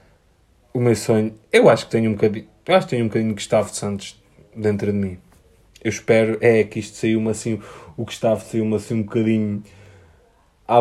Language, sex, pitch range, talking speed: Portuguese, male, 105-140 Hz, 205 wpm